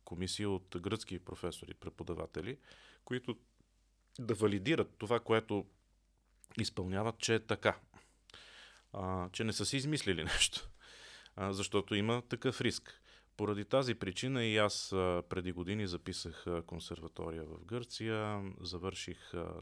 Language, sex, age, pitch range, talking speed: Bulgarian, male, 30-49, 90-110 Hz, 110 wpm